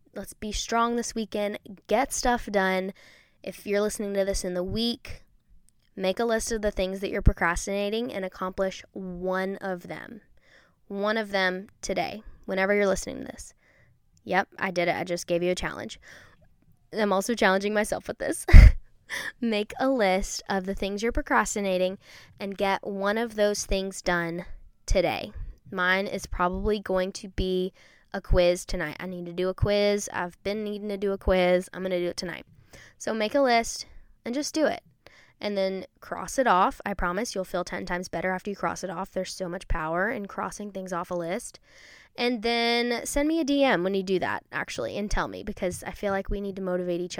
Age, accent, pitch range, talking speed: 10-29, American, 185-220 Hz, 200 wpm